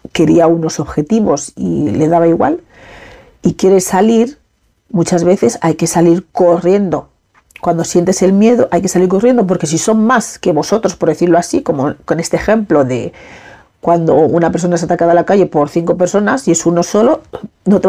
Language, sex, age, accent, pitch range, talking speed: Spanish, female, 40-59, Spanish, 165-200 Hz, 185 wpm